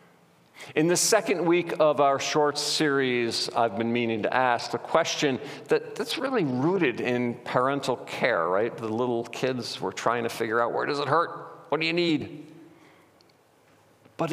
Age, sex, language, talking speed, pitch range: 50-69, male, English, 165 wpm, 115-155 Hz